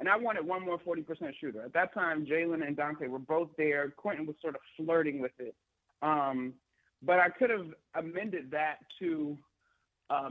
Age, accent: 30-49, American